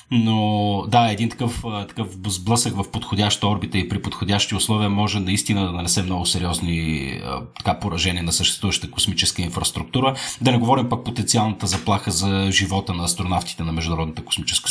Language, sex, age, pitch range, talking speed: Bulgarian, male, 30-49, 95-120 Hz, 155 wpm